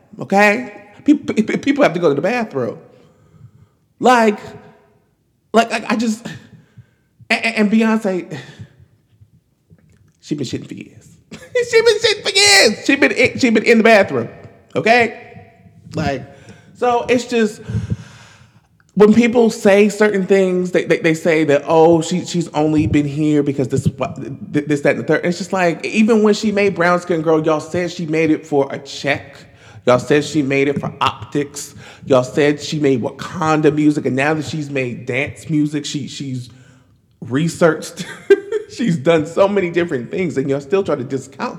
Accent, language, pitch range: American, English, 140-220 Hz